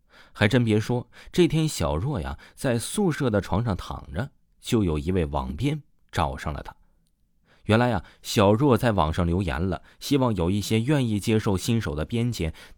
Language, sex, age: Chinese, male, 20-39